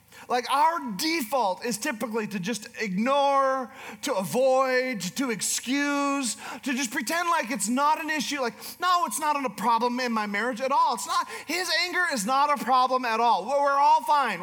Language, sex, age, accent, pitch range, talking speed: English, male, 40-59, American, 205-280 Hz, 185 wpm